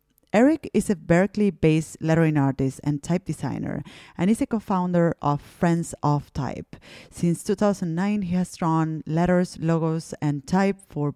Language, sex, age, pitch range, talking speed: English, female, 30-49, 150-190 Hz, 145 wpm